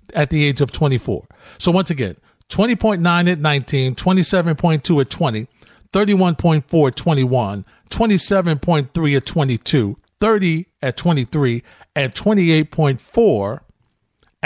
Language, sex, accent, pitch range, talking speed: English, male, American, 115-165 Hz, 95 wpm